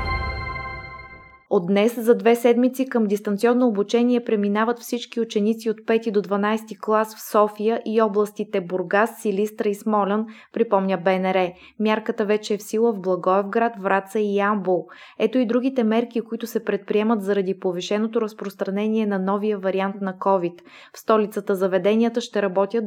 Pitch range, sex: 195-225 Hz, female